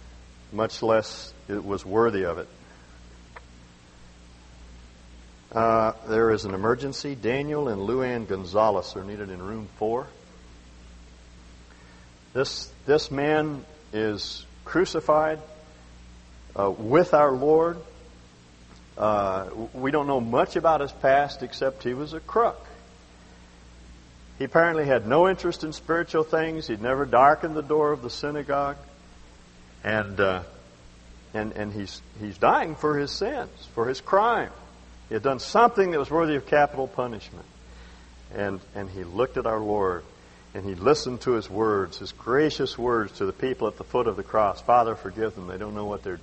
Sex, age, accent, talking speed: male, 50-69, American, 150 wpm